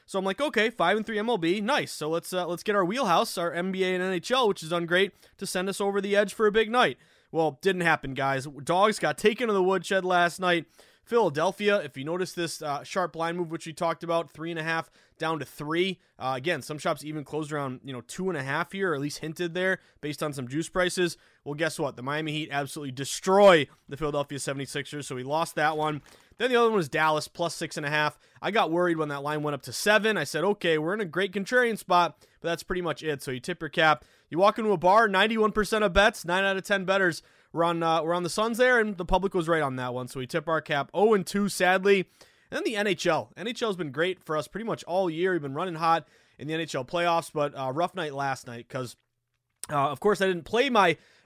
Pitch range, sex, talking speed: 150-195 Hz, male, 250 wpm